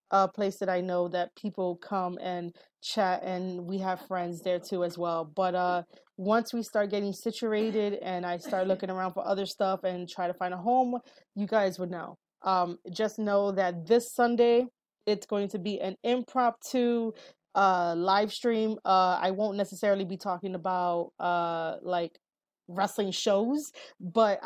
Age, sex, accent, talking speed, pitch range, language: 20-39, female, American, 170 wpm, 180-205 Hz, English